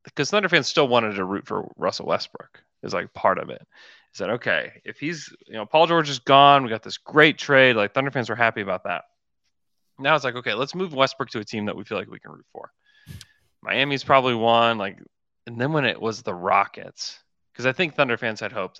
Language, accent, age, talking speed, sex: English, American, 30-49, 235 wpm, male